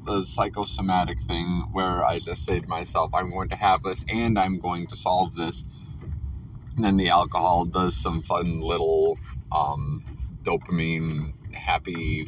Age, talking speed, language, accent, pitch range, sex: 30-49, 150 wpm, English, American, 90-115 Hz, male